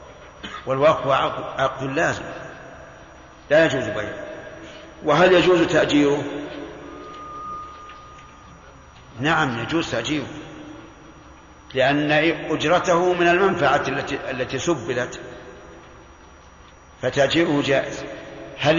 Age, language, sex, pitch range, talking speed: 50-69, Arabic, male, 140-165 Hz, 70 wpm